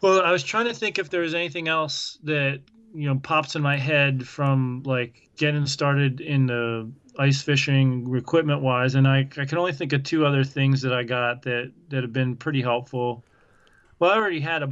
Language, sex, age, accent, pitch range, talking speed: English, male, 30-49, American, 130-150 Hz, 210 wpm